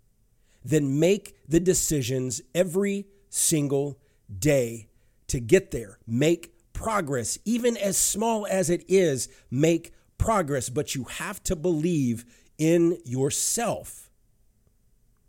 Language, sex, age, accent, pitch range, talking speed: English, male, 50-69, American, 115-180 Hz, 105 wpm